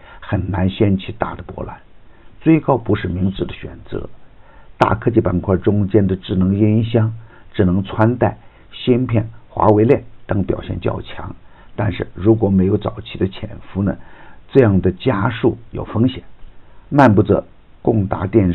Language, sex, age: Chinese, male, 50-69